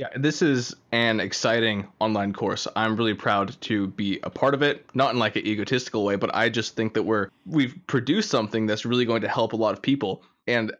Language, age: English, 20-39